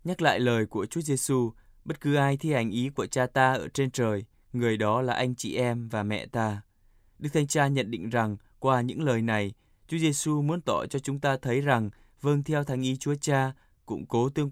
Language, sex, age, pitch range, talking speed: Vietnamese, male, 20-39, 115-145 Hz, 225 wpm